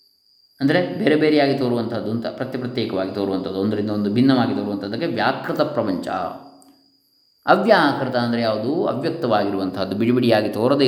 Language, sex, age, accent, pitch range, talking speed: Kannada, male, 20-39, native, 115-145 Hz, 110 wpm